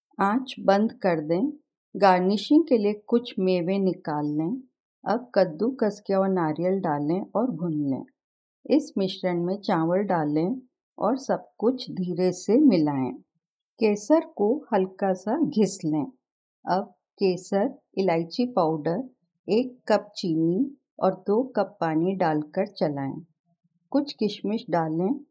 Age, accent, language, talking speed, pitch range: 50-69, native, Hindi, 125 wpm, 175-240 Hz